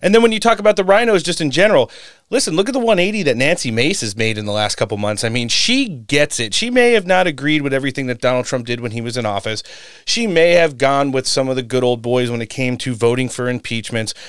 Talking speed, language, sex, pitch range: 275 wpm, English, male, 120-165 Hz